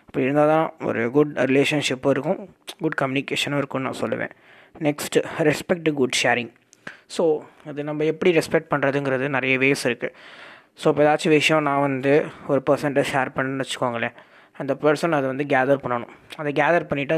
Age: 20-39